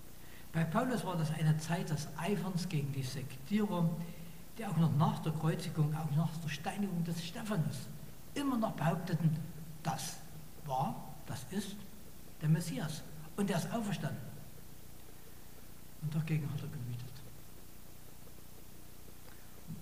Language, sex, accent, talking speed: German, male, German, 125 wpm